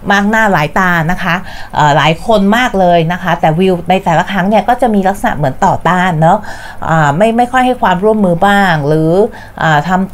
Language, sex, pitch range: Thai, female, 160-205 Hz